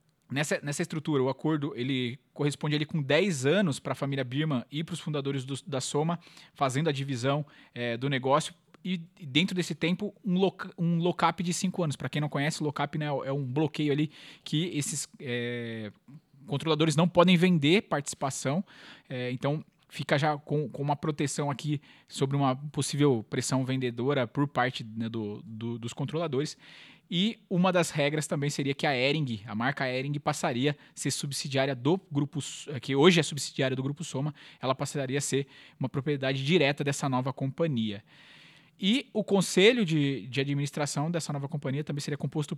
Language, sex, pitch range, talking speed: Portuguese, male, 135-165 Hz, 175 wpm